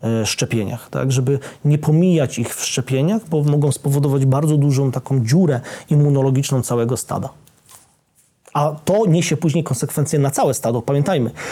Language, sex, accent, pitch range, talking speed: Polish, male, native, 130-150 Hz, 140 wpm